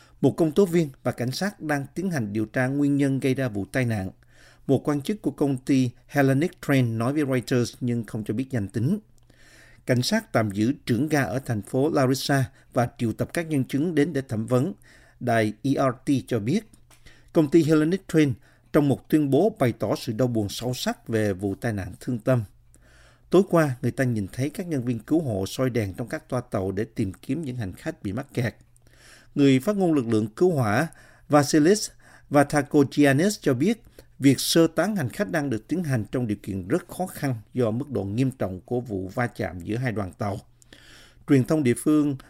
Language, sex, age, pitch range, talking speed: Vietnamese, male, 50-69, 115-145 Hz, 215 wpm